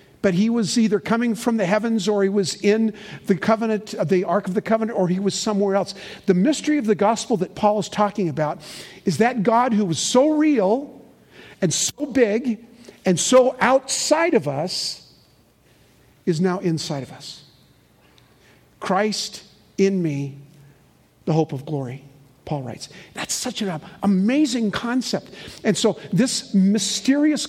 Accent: American